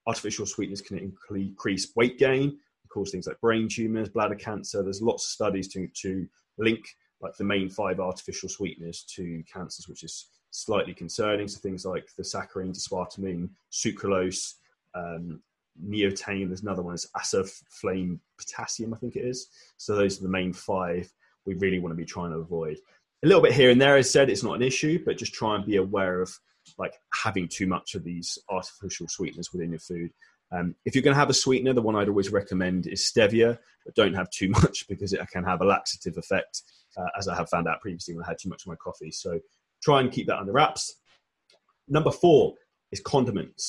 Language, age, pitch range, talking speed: English, 20-39, 90-115 Hz, 205 wpm